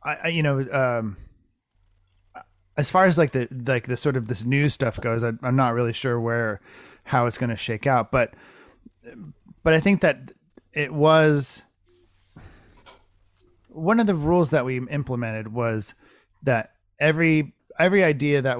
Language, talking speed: English, 160 wpm